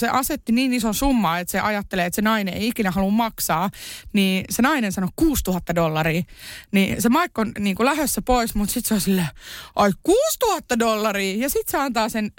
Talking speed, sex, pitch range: 205 wpm, female, 185-235 Hz